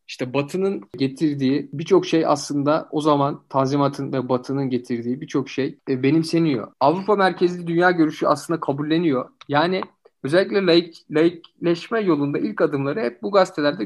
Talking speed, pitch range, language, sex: 135 wpm, 145-190 Hz, Turkish, male